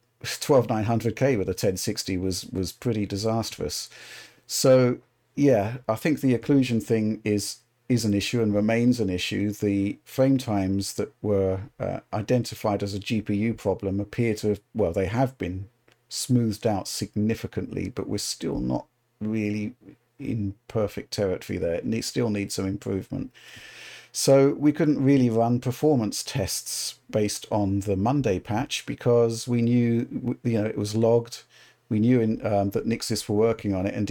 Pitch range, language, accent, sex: 100-120 Hz, English, British, male